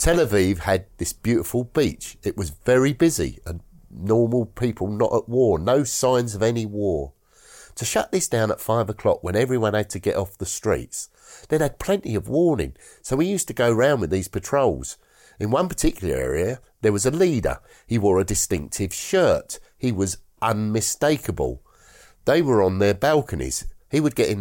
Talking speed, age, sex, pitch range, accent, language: 185 wpm, 50-69, male, 100-130 Hz, British, English